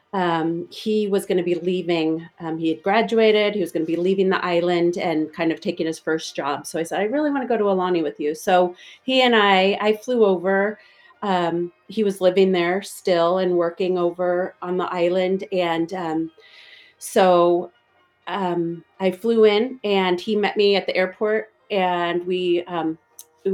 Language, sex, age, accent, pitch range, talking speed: English, female, 40-59, American, 180-215 Hz, 190 wpm